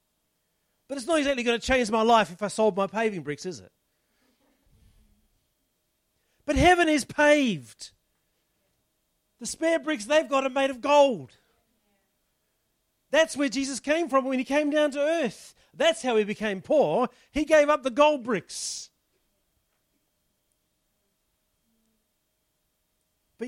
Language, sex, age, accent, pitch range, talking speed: English, male, 40-59, Australian, 210-270 Hz, 135 wpm